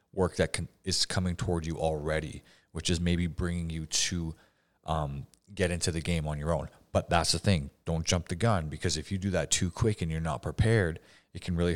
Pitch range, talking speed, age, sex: 80-100 Hz, 225 wpm, 30-49, male